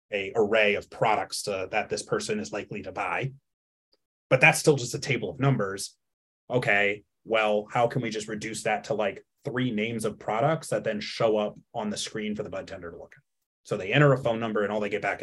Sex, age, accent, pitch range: male, 30-49, American, 105-135 Hz